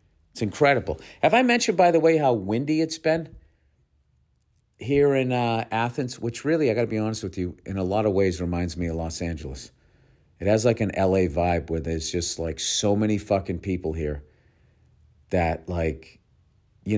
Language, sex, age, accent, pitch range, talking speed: English, male, 50-69, American, 80-135 Hz, 185 wpm